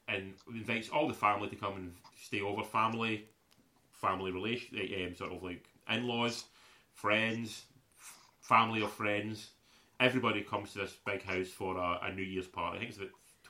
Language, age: English, 30-49